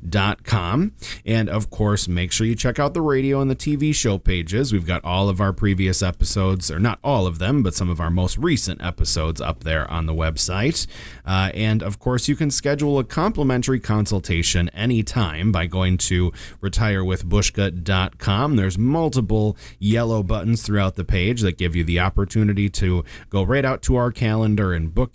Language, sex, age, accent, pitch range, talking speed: English, male, 30-49, American, 90-115 Hz, 185 wpm